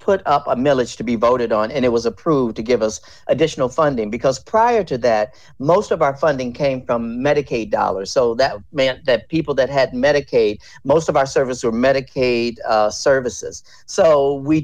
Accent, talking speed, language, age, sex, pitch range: American, 195 wpm, English, 50-69, male, 120-160 Hz